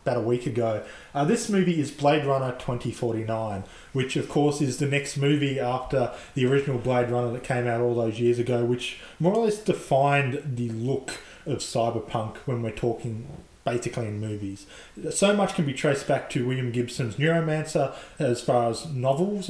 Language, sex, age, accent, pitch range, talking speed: English, male, 20-39, Australian, 120-145 Hz, 180 wpm